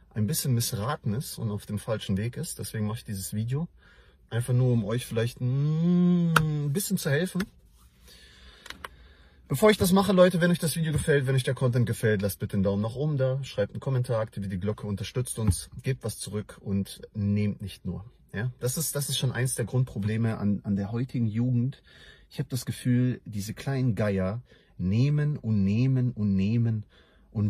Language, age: English, 40-59